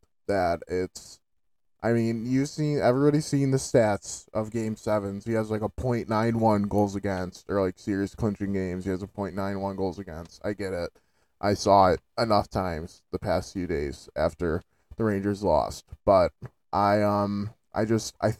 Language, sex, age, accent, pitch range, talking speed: English, male, 20-39, American, 100-125 Hz, 175 wpm